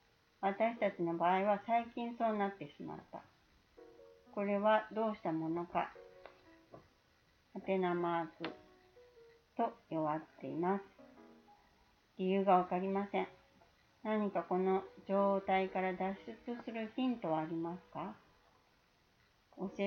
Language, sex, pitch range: Japanese, female, 170-215 Hz